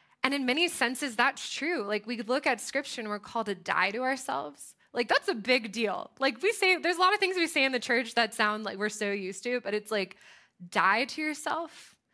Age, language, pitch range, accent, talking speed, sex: 20-39, English, 200-265 Hz, American, 240 wpm, female